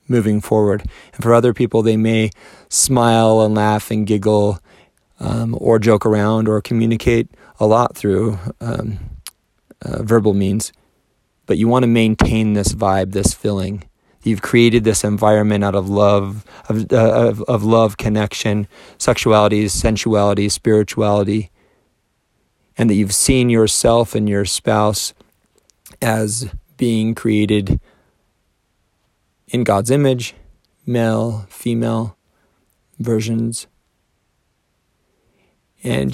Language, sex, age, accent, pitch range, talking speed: English, male, 30-49, American, 100-115 Hz, 115 wpm